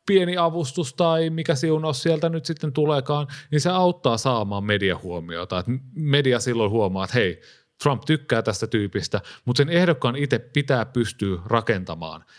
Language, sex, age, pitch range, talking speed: Finnish, male, 30-49, 100-140 Hz, 145 wpm